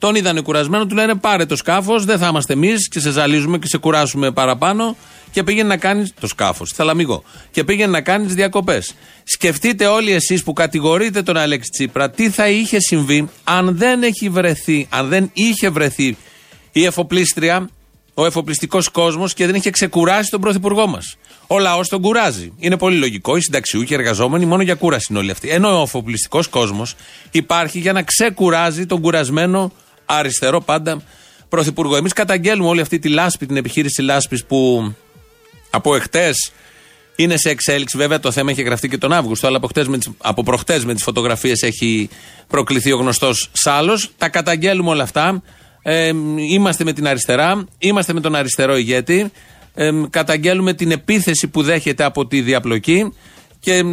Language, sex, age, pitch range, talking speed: Greek, male, 40-59, 140-190 Hz, 165 wpm